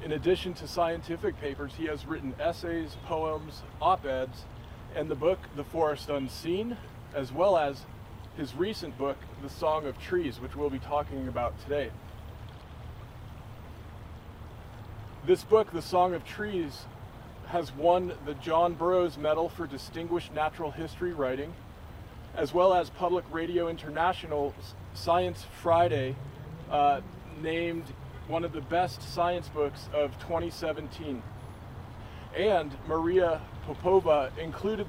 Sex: male